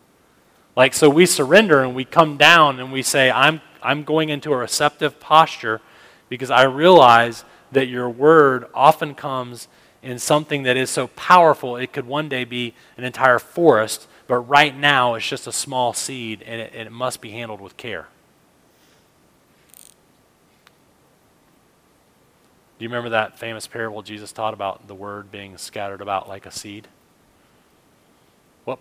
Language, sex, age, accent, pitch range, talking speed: English, male, 30-49, American, 110-140 Hz, 155 wpm